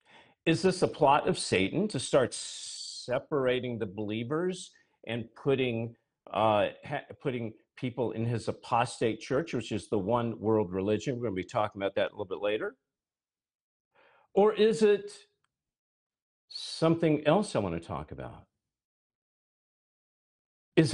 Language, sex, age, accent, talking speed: English, male, 50-69, American, 140 wpm